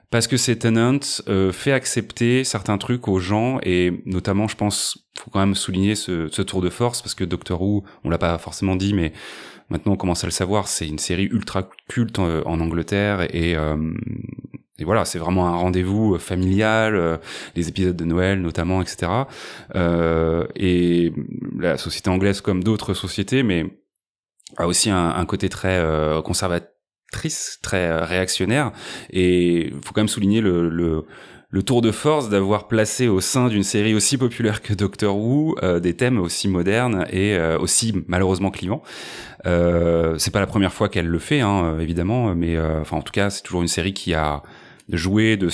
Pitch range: 85-105 Hz